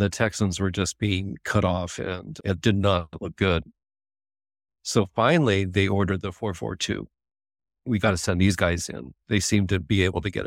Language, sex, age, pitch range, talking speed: English, male, 50-69, 95-115 Hz, 190 wpm